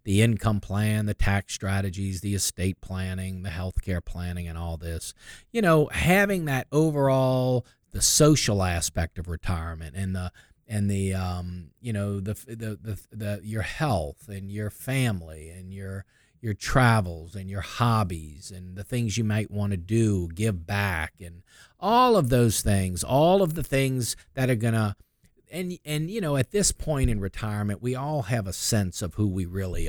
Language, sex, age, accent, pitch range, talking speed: English, male, 40-59, American, 95-135 Hz, 180 wpm